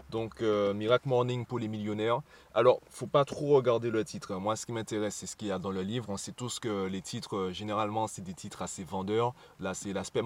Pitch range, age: 105-140 Hz, 20-39